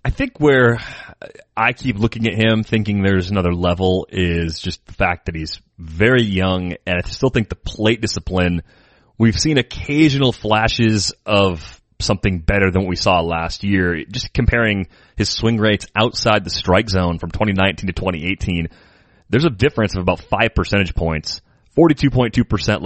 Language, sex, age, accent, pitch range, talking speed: English, male, 30-49, American, 90-110 Hz, 165 wpm